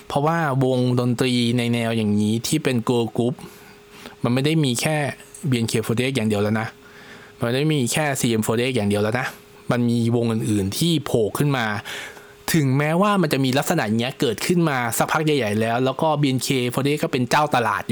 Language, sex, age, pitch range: Thai, male, 20-39, 120-160 Hz